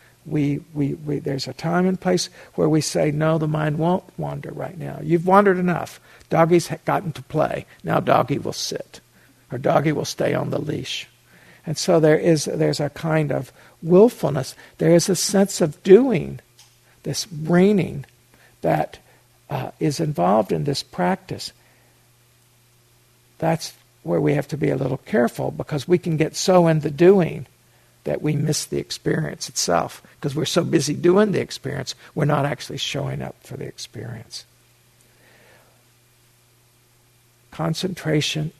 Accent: American